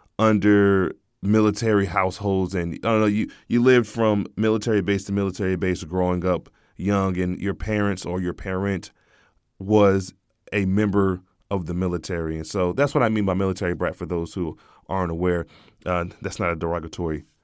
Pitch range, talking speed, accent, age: 95-110 Hz, 170 wpm, American, 20-39